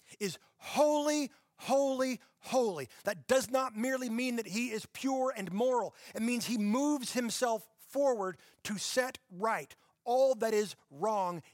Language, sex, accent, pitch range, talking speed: English, male, American, 155-215 Hz, 145 wpm